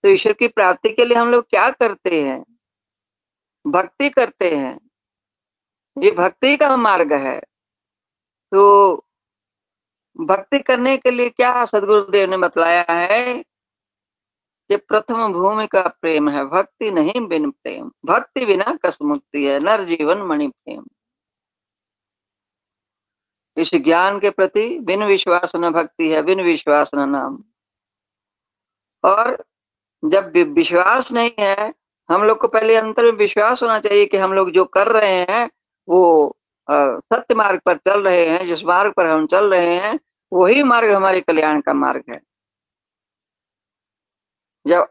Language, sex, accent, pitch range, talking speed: Hindi, female, native, 160-235 Hz, 140 wpm